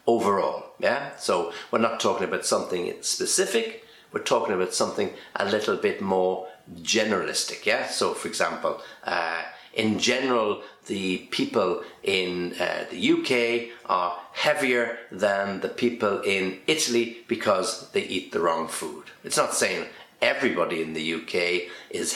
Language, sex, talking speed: English, male, 140 wpm